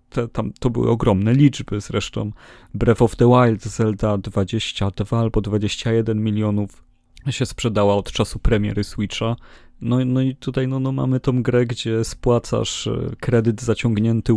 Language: Polish